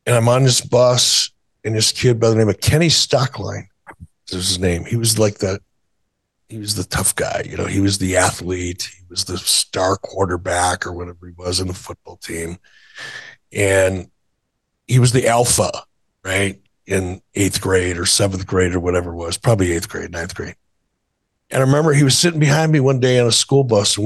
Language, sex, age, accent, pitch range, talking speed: English, male, 60-79, American, 95-120 Hz, 200 wpm